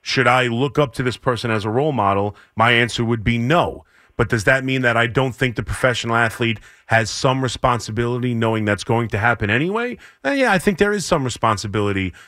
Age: 30-49